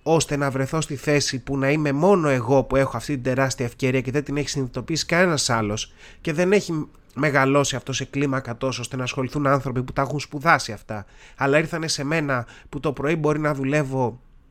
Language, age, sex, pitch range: Greek, 30-49, male, 120-150 Hz